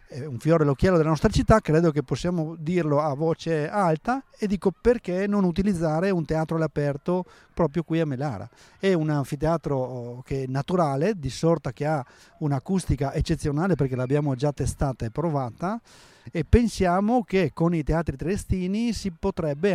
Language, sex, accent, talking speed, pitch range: Italian, male, native, 160 wpm, 140-180 Hz